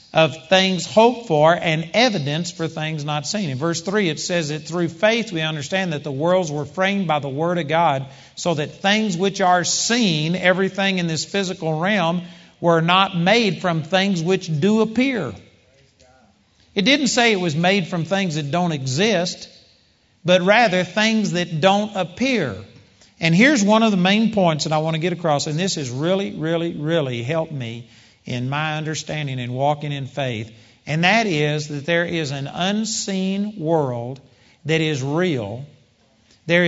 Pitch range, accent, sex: 150-195 Hz, American, male